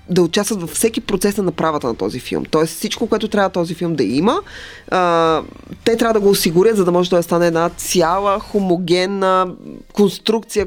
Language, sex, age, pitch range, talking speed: Bulgarian, female, 20-39, 165-200 Hz, 180 wpm